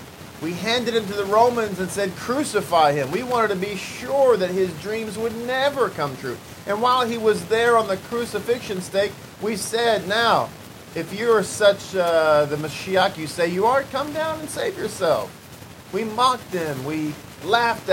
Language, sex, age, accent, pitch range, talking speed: English, male, 40-59, American, 150-220 Hz, 180 wpm